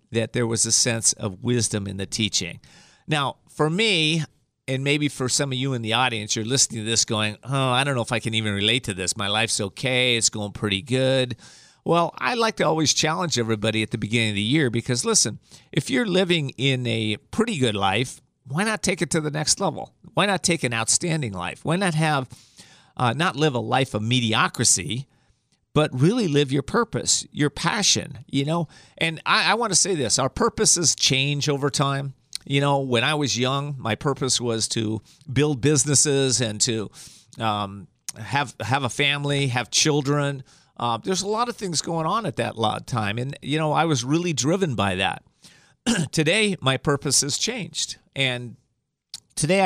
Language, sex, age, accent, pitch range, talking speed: English, male, 40-59, American, 115-155 Hz, 195 wpm